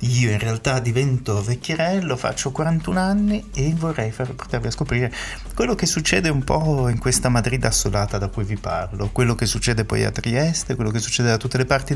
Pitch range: 105-135 Hz